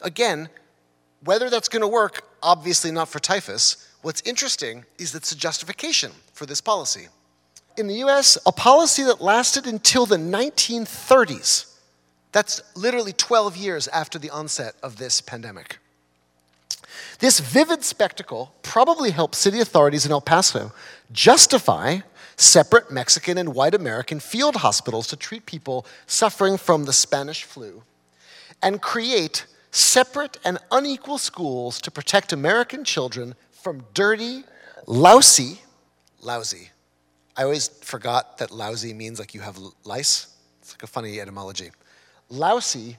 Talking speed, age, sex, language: 135 wpm, 30-49, male, French